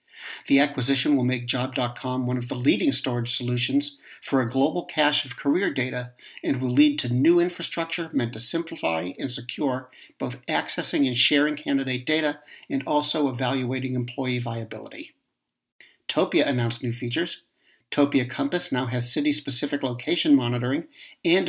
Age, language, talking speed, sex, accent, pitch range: 60-79, English, 145 wpm, male, American, 125-150 Hz